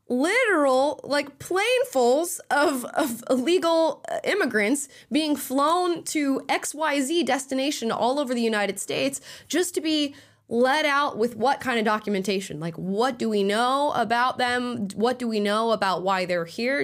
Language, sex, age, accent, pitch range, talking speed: English, female, 10-29, American, 185-260 Hz, 150 wpm